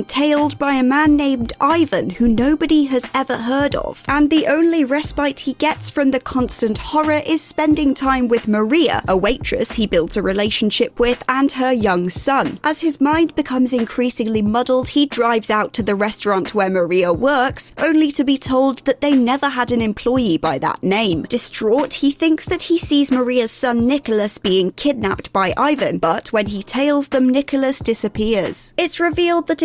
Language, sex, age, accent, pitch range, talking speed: English, female, 20-39, British, 220-275 Hz, 180 wpm